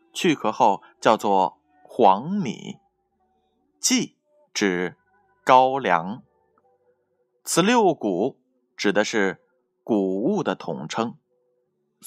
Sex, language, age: male, Chinese, 20-39